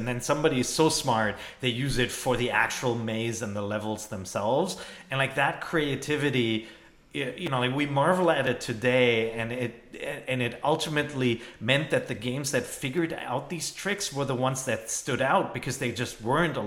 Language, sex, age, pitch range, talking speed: English, male, 30-49, 110-130 Hz, 195 wpm